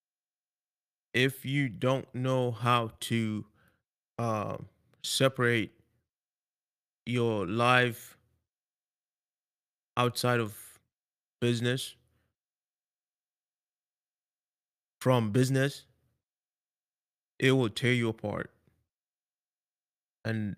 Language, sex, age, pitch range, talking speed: English, male, 20-39, 110-130 Hz, 60 wpm